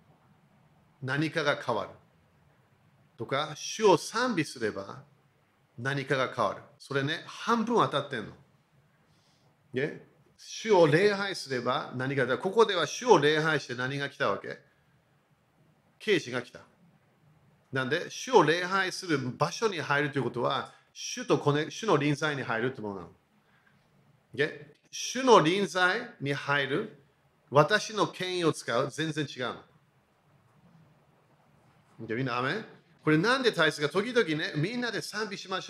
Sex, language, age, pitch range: male, Japanese, 40-59, 140-180 Hz